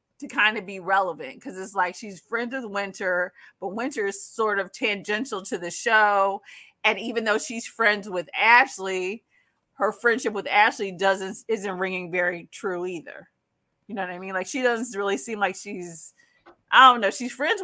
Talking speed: 185 wpm